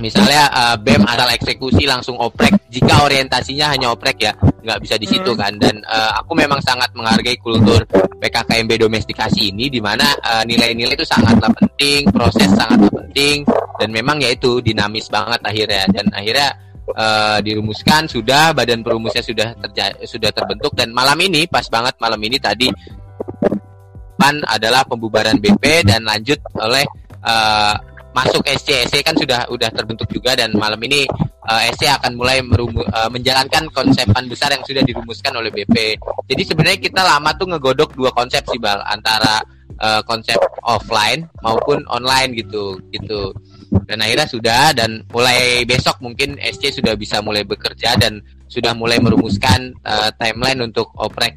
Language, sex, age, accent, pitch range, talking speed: Indonesian, male, 20-39, native, 105-135 Hz, 155 wpm